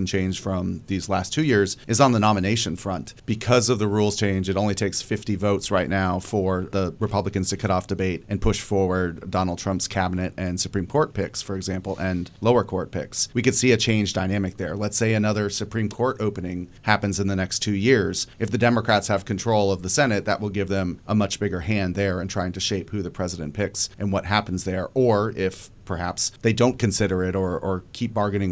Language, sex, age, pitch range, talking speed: English, male, 30-49, 95-110 Hz, 220 wpm